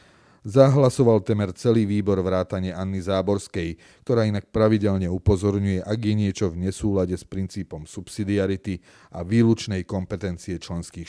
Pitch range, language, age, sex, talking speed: 90-110 Hz, Slovak, 30-49, male, 125 wpm